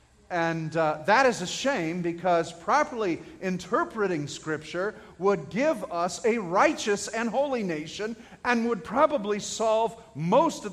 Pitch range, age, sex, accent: 185-255 Hz, 40-59, male, American